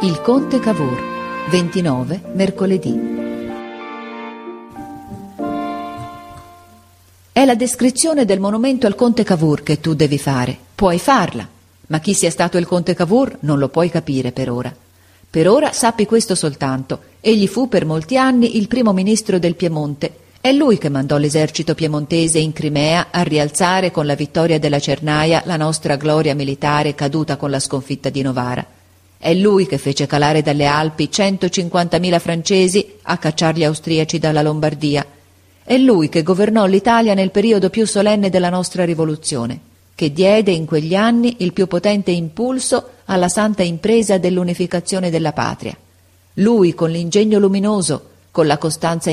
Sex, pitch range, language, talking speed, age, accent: female, 145-195 Hz, Italian, 145 wpm, 40-59, native